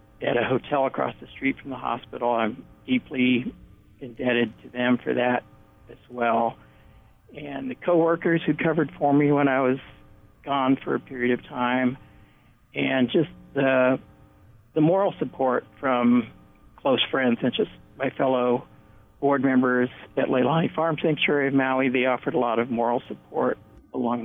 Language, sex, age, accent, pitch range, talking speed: English, male, 60-79, American, 125-155 Hz, 155 wpm